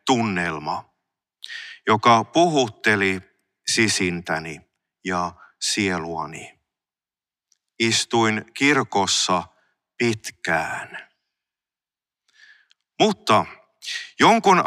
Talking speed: 45 wpm